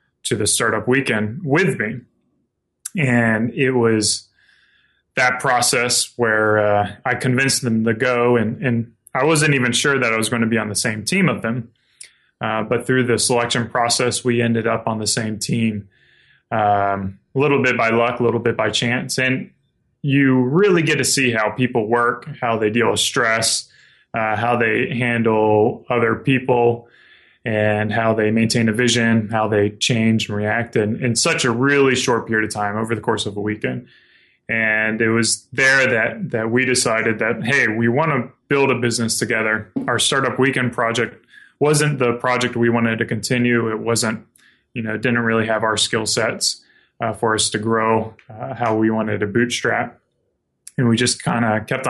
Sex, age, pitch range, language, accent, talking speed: male, 20-39, 110-125 Hz, English, American, 185 wpm